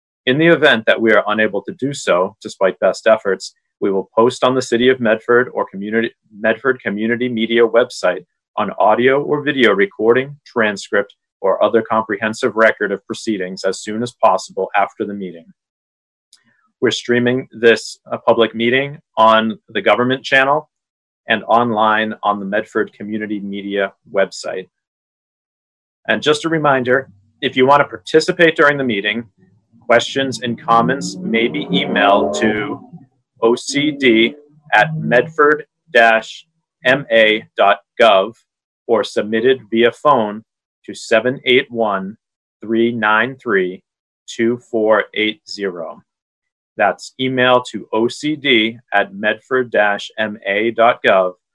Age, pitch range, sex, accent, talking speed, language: 40-59, 105-130 Hz, male, American, 110 wpm, English